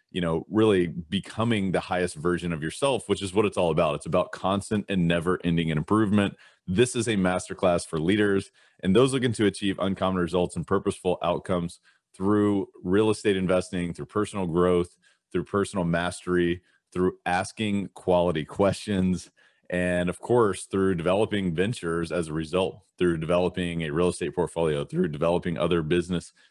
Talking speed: 160 wpm